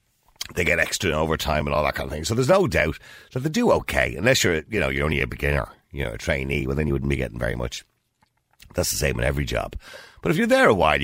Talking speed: 270 wpm